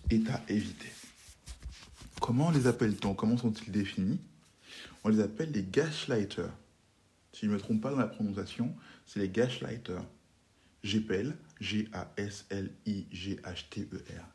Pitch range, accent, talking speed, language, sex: 100-120 Hz, French, 120 wpm, French, male